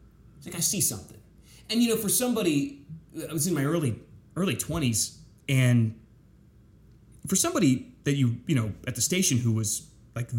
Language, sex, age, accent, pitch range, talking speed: English, male, 30-49, American, 115-140 Hz, 175 wpm